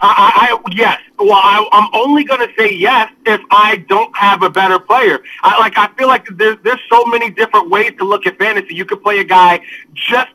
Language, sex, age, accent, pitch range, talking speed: English, male, 30-49, American, 190-255 Hz, 225 wpm